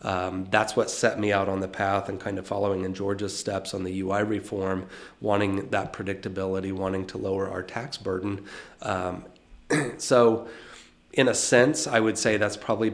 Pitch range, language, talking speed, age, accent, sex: 95-110 Hz, English, 180 wpm, 30-49, American, male